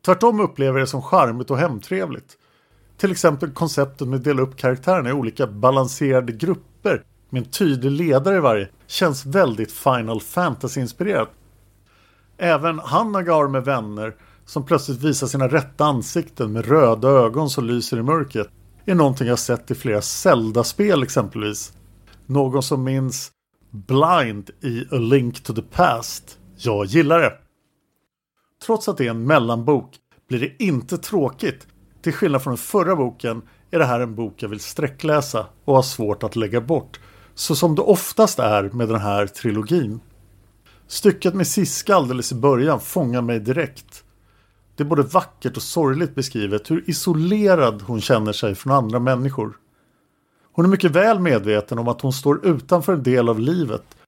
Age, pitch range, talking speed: 50-69, 110-155 Hz, 160 wpm